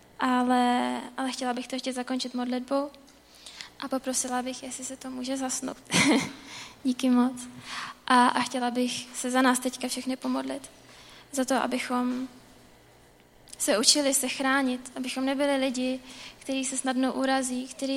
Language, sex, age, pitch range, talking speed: Czech, female, 20-39, 245-265 Hz, 145 wpm